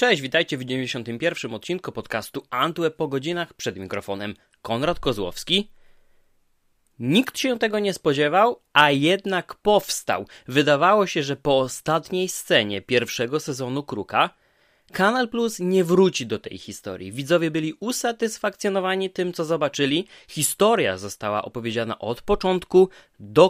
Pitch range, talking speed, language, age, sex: 130-190 Hz, 125 wpm, Polish, 20-39, male